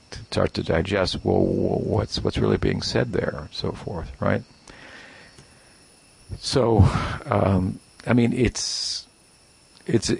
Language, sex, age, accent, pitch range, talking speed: English, male, 50-69, American, 90-110 Hz, 125 wpm